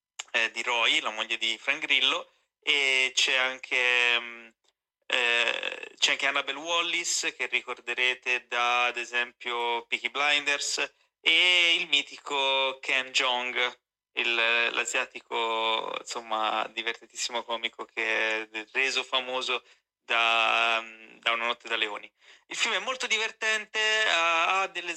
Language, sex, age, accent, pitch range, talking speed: Italian, male, 30-49, native, 120-150 Hz, 115 wpm